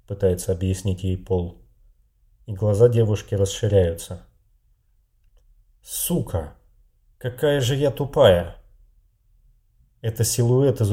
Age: 30-49